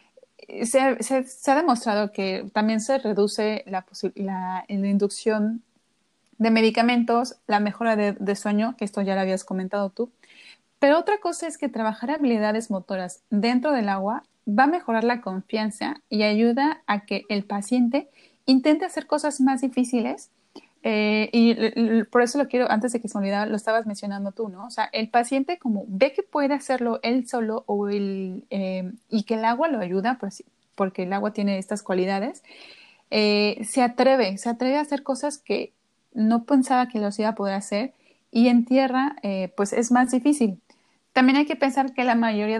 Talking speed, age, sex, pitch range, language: 185 wpm, 30-49, female, 205-260 Hz, Spanish